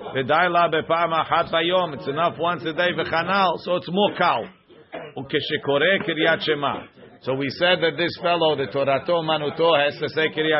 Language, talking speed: English, 120 wpm